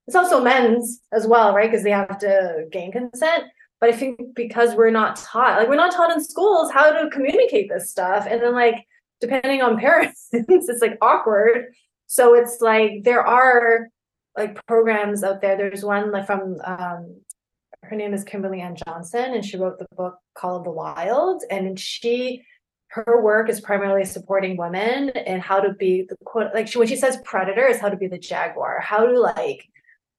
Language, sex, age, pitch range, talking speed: English, female, 20-39, 195-240 Hz, 195 wpm